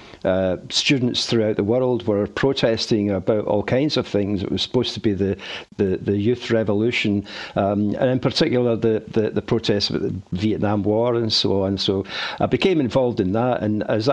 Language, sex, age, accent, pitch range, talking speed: English, male, 60-79, British, 105-125 Hz, 190 wpm